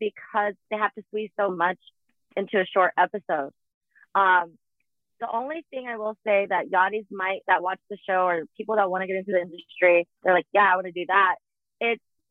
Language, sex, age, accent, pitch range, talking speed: English, female, 30-49, American, 195-245 Hz, 210 wpm